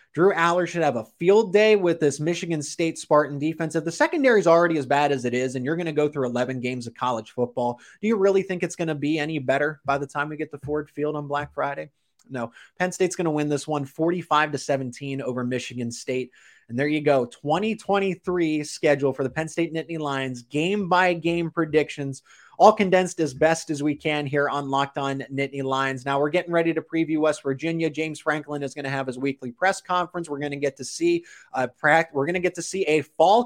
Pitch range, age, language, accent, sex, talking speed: 135-165 Hz, 20-39, English, American, male, 225 wpm